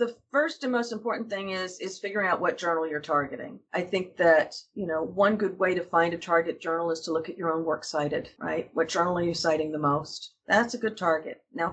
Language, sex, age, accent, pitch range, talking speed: English, female, 40-59, American, 160-195 Hz, 245 wpm